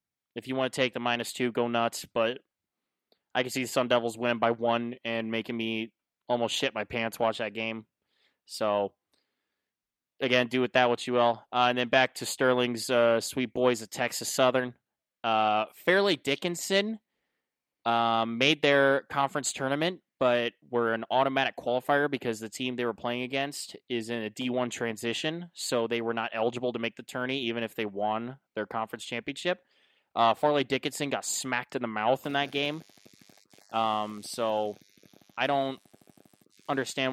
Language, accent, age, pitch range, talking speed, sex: English, American, 20-39, 110-130 Hz, 175 wpm, male